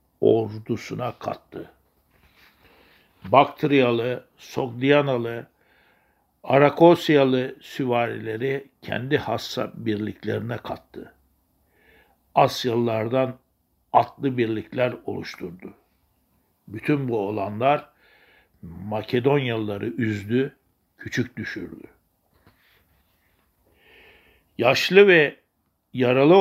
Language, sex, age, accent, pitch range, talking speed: Turkish, male, 60-79, native, 110-140 Hz, 55 wpm